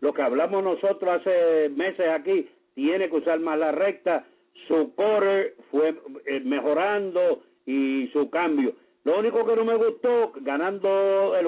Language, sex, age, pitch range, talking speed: English, male, 60-79, 145-230 Hz, 145 wpm